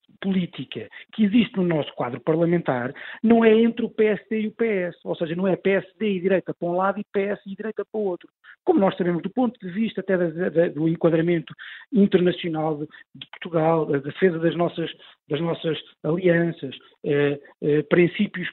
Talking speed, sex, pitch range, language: 175 wpm, male, 160-210 Hz, Portuguese